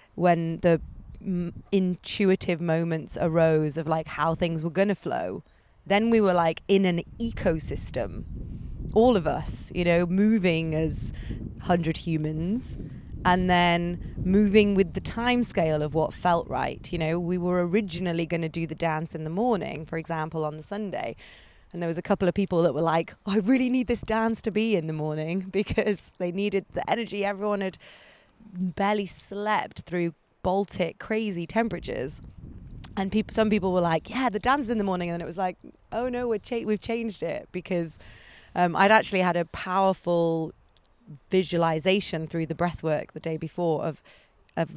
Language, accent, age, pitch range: English, British, 30-49, 165-200 Hz